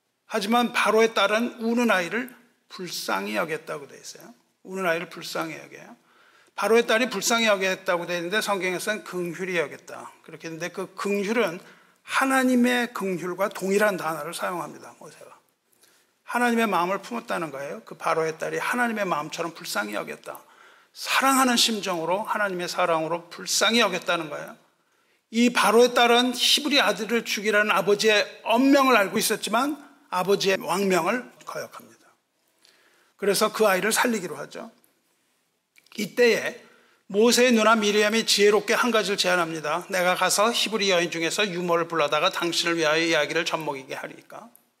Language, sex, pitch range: Korean, male, 180-235 Hz